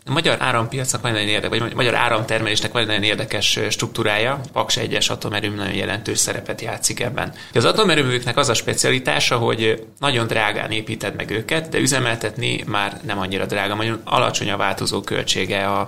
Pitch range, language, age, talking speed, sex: 100-120 Hz, Hungarian, 20-39, 165 wpm, male